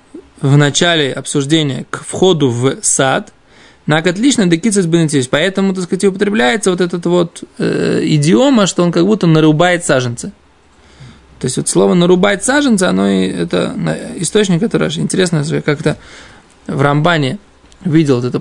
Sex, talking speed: male, 145 wpm